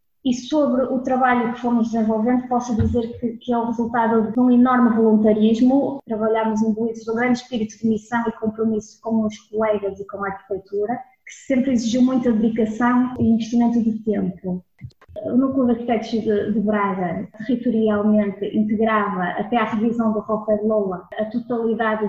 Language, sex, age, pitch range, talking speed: Portuguese, female, 20-39, 210-240 Hz, 160 wpm